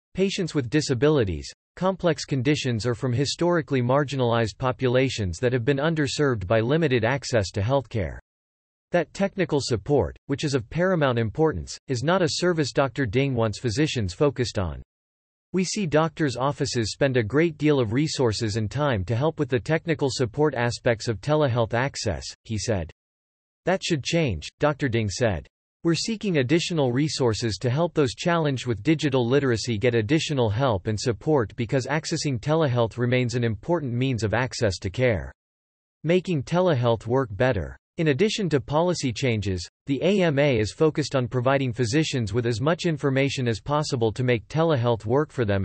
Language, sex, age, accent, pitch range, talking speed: English, male, 40-59, American, 115-155 Hz, 160 wpm